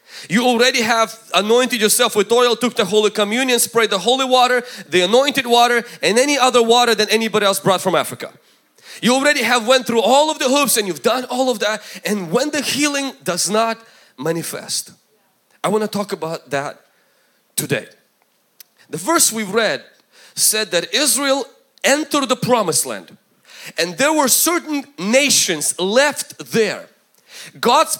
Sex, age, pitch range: male, 30-49, 210-275 Hz